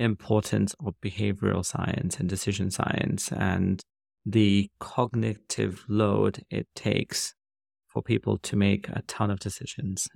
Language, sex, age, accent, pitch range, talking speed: English, male, 30-49, British, 100-110 Hz, 125 wpm